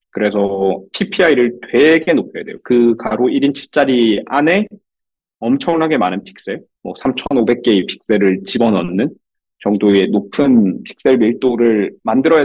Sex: male